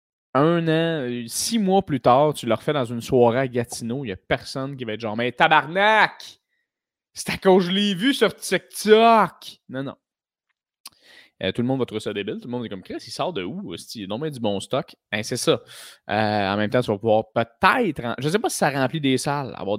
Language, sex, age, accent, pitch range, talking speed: French, male, 20-39, Canadian, 110-145 Hz, 250 wpm